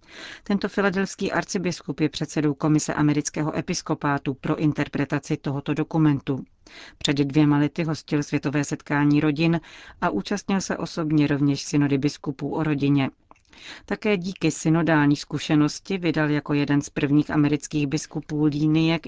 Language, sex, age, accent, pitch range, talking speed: Czech, female, 40-59, native, 145-165 Hz, 125 wpm